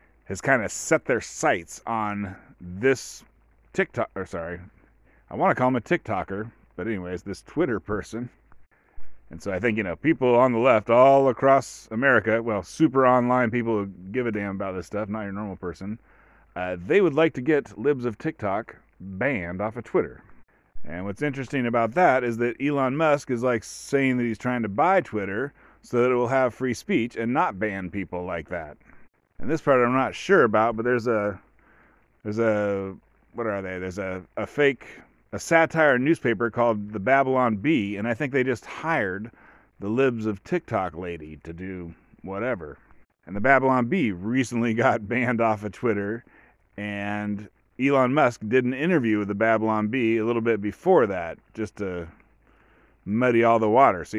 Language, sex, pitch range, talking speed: English, male, 100-130 Hz, 185 wpm